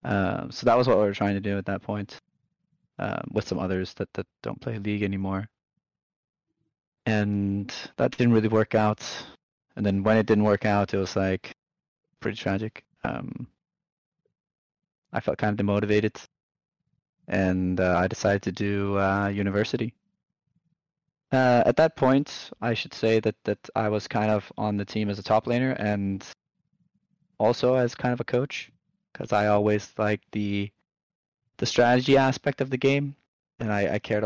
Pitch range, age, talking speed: 100-140 Hz, 20-39, 170 wpm